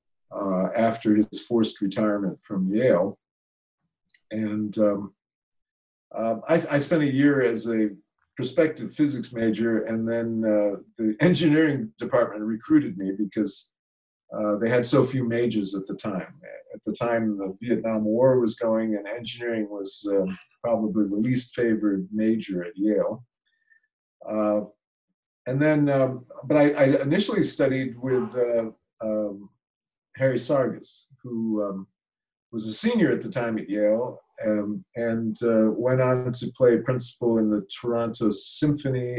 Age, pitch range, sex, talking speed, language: 50-69, 105-130 Hz, male, 140 wpm, English